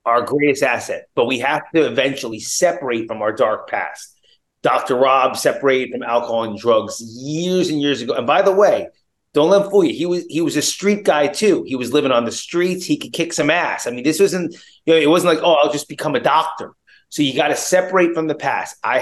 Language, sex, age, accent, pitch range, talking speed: English, male, 30-49, American, 140-185 Hz, 240 wpm